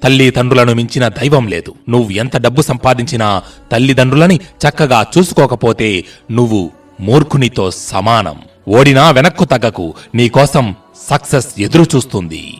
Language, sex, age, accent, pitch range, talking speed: Telugu, male, 30-49, native, 110-145 Hz, 100 wpm